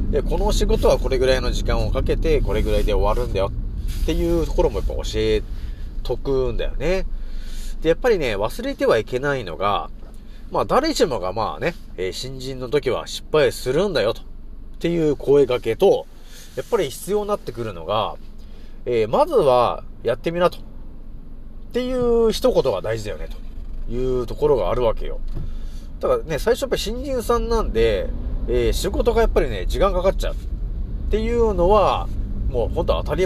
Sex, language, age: male, Japanese, 30-49